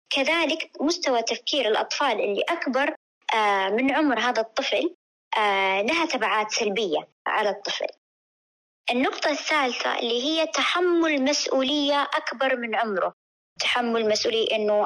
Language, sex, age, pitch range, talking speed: Arabic, male, 20-39, 225-305 Hz, 110 wpm